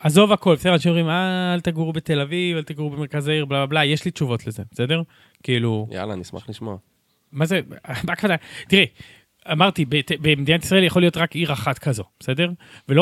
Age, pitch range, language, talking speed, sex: 30-49, 135-175 Hz, Hebrew, 180 wpm, male